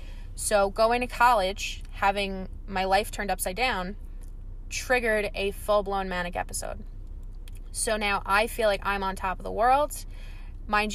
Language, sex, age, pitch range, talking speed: English, female, 20-39, 185-230 Hz, 150 wpm